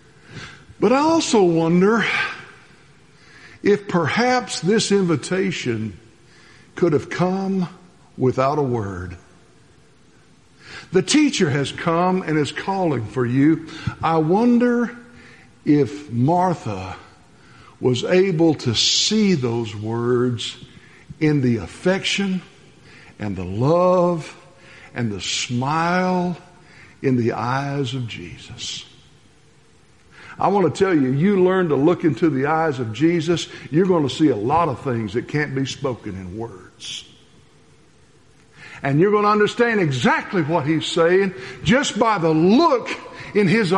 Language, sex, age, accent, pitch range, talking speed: English, male, 60-79, American, 130-195 Hz, 125 wpm